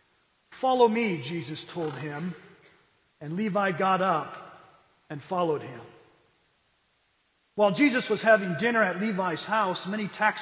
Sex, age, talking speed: male, 40-59, 125 wpm